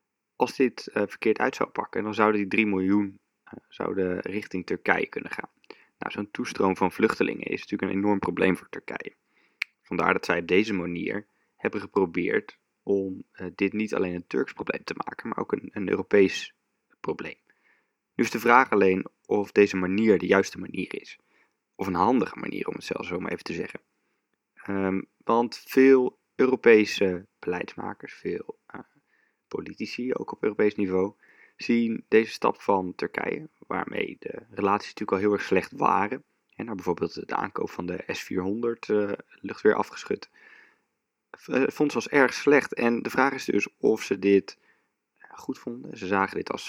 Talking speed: 170 wpm